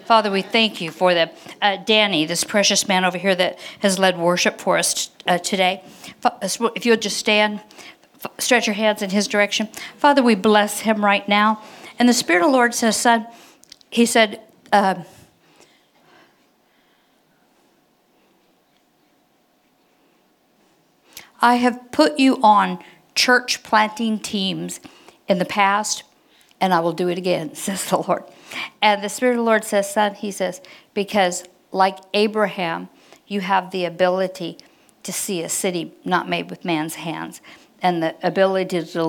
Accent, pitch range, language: American, 180-215 Hz, English